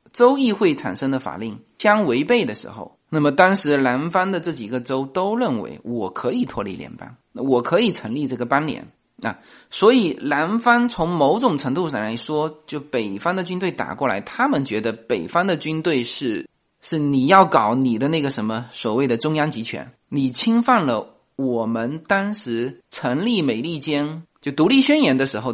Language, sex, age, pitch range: Chinese, male, 20-39, 135-220 Hz